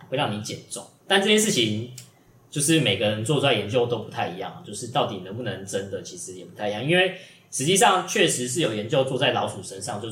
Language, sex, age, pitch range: Chinese, male, 20-39, 110-155 Hz